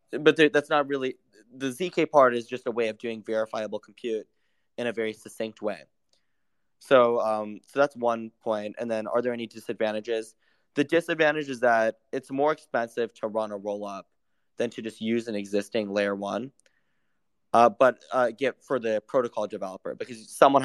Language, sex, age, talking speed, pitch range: English, male, 20-39, 180 wpm, 105-130 Hz